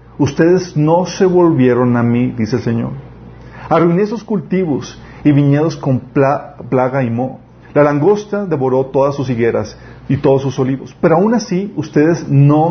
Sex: male